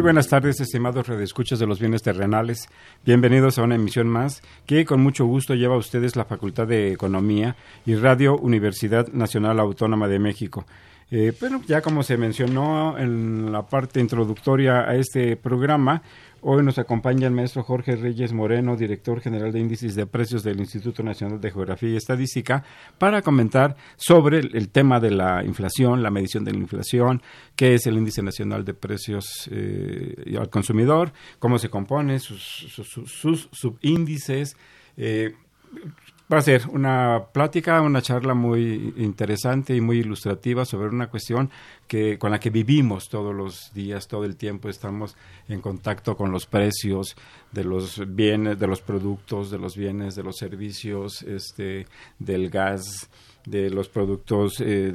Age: 50-69